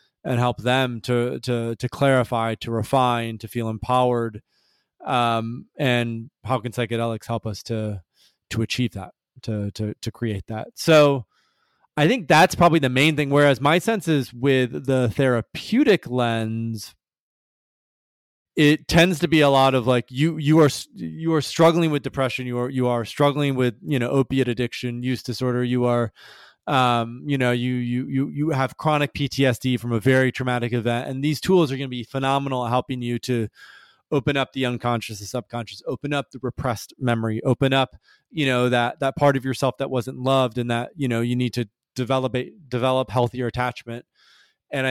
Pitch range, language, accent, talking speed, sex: 120-135 Hz, English, American, 185 wpm, male